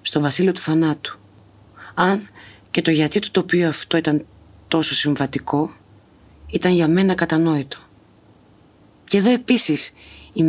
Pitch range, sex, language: 120-170 Hz, female, Greek